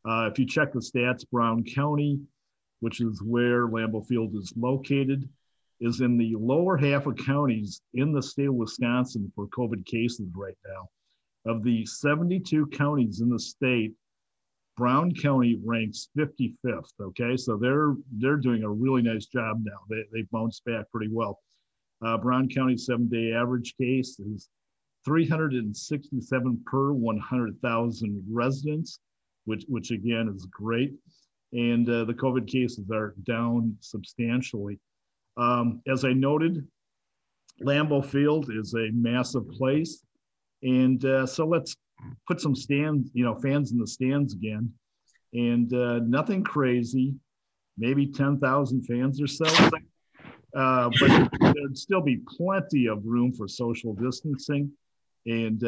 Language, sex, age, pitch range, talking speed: English, male, 50-69, 115-135 Hz, 140 wpm